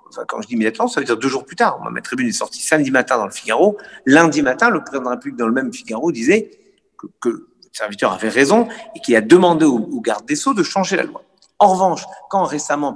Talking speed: 250 wpm